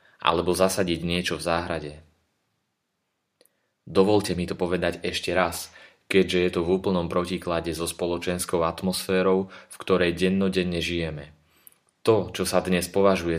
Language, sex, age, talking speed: Slovak, male, 30-49, 130 wpm